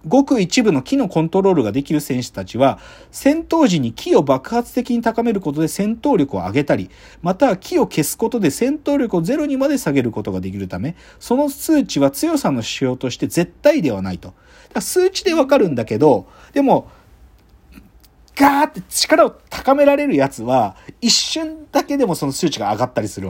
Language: Japanese